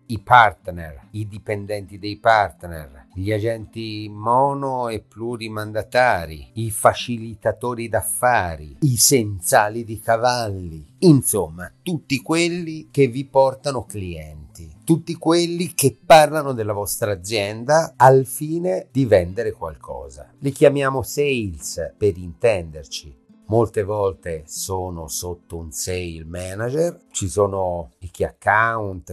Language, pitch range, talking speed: Italian, 90-130 Hz, 110 wpm